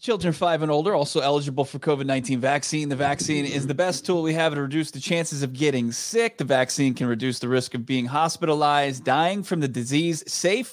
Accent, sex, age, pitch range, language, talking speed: American, male, 30-49, 130-170 Hz, English, 215 wpm